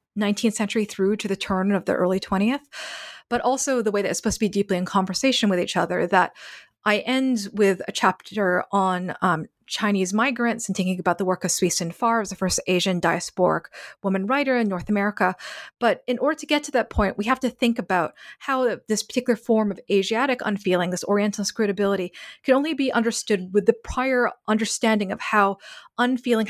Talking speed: 195 wpm